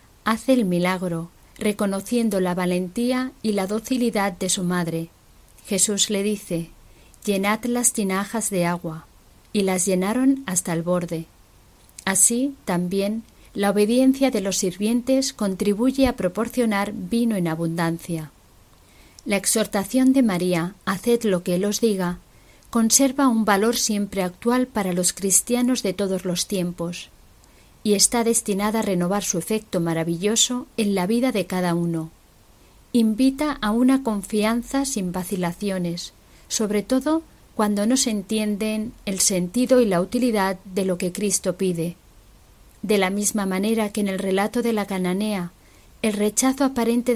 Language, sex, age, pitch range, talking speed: Spanish, female, 40-59, 180-230 Hz, 140 wpm